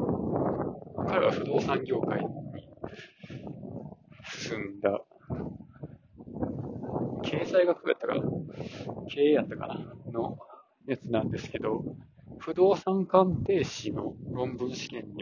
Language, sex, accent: Japanese, male, native